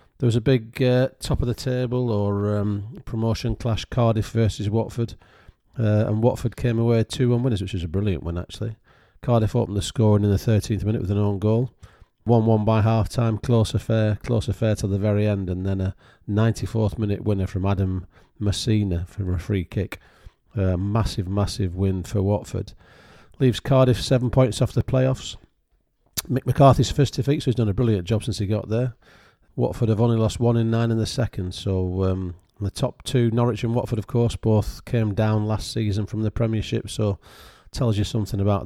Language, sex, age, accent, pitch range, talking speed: English, male, 40-59, British, 100-120 Hz, 195 wpm